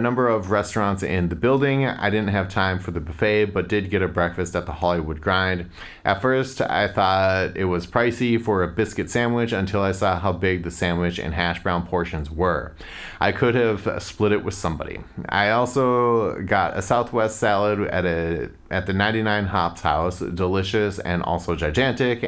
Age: 30-49